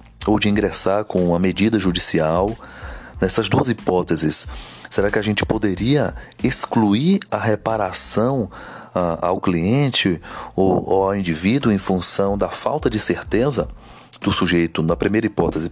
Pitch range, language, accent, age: 90-120 Hz, Portuguese, Brazilian, 40-59